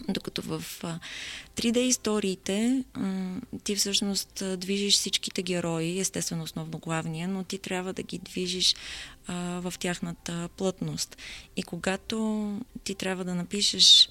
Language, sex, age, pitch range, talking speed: Bulgarian, female, 20-39, 165-190 Hz, 115 wpm